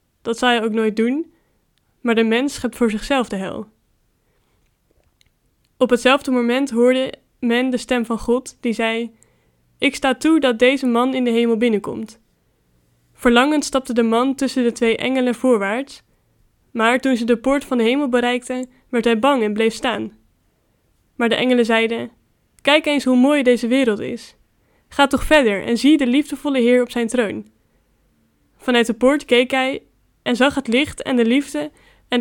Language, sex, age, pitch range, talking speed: Dutch, female, 10-29, 225-260 Hz, 175 wpm